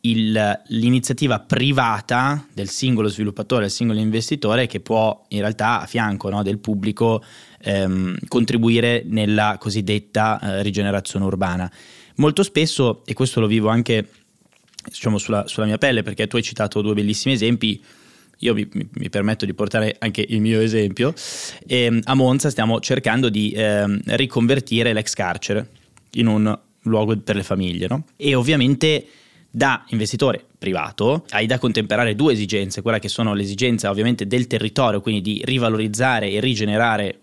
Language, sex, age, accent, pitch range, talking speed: Italian, male, 20-39, native, 105-120 Hz, 145 wpm